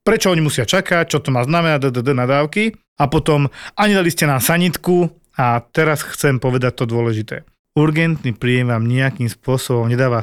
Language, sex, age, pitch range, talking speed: Slovak, male, 40-59, 120-140 Hz, 170 wpm